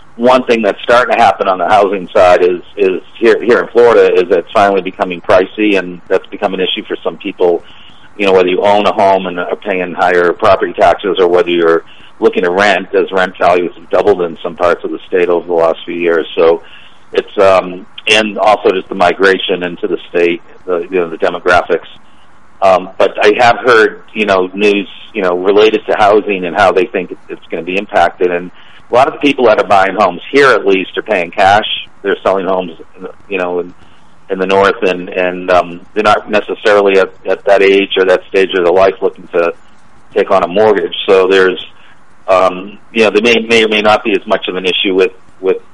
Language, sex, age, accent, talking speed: English, male, 50-69, American, 220 wpm